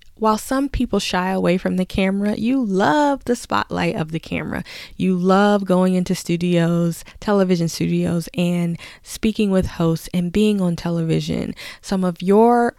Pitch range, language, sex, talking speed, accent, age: 170-210 Hz, English, female, 155 wpm, American, 20-39